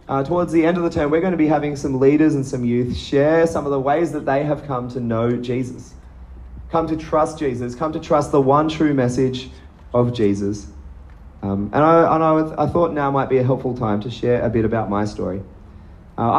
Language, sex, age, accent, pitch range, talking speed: English, male, 30-49, Australian, 110-150 Hz, 230 wpm